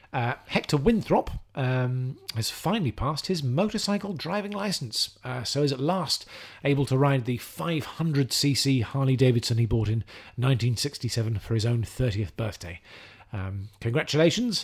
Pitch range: 110-145 Hz